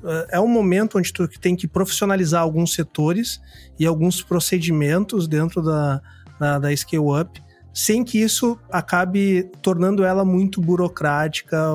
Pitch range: 155-190 Hz